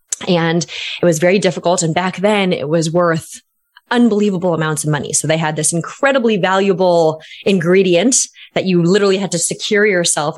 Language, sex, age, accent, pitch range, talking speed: English, female, 20-39, American, 155-190 Hz, 170 wpm